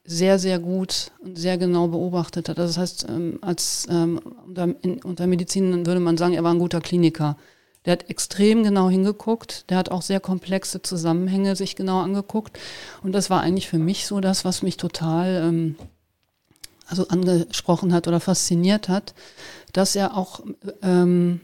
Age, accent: 40-59, German